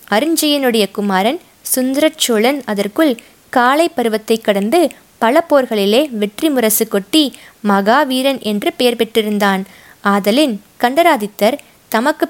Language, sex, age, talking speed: Tamil, female, 20-39, 95 wpm